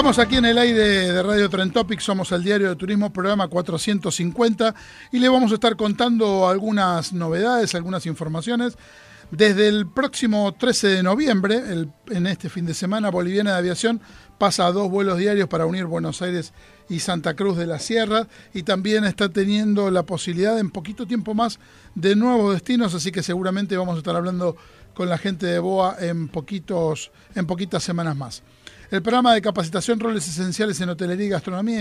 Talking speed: 180 wpm